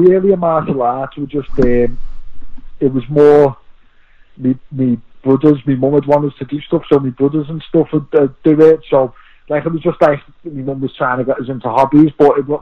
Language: English